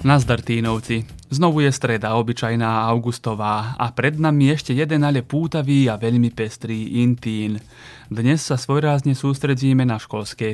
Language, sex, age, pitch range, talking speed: Slovak, male, 30-49, 115-140 Hz, 135 wpm